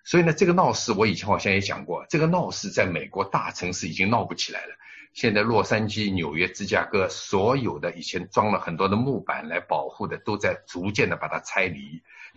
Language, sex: Chinese, male